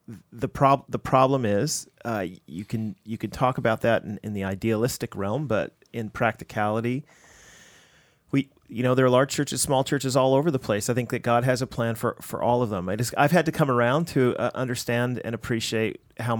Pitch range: 105-130 Hz